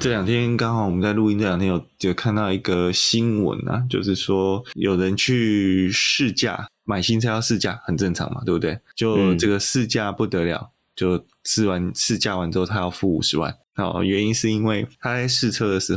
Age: 20-39